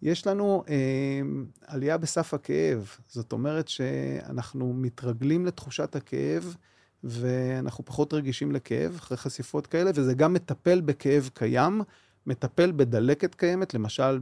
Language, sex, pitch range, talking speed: Hebrew, male, 125-160 Hz, 120 wpm